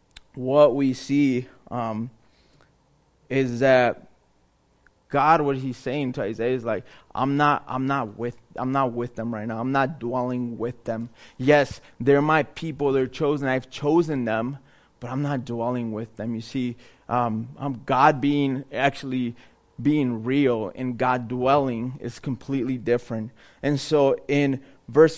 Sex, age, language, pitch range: male, 20-39, English, 125-150 Hz